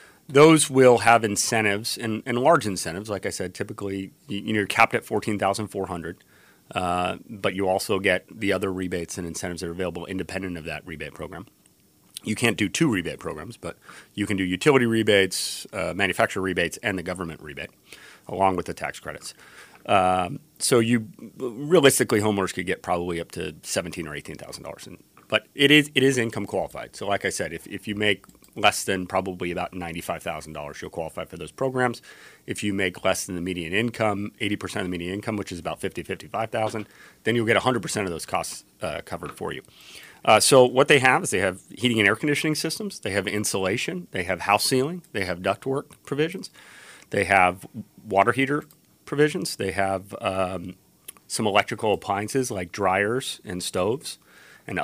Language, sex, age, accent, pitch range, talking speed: English, male, 30-49, American, 90-115 Hz, 180 wpm